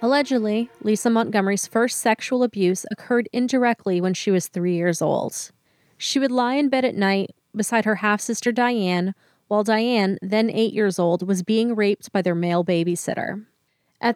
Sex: female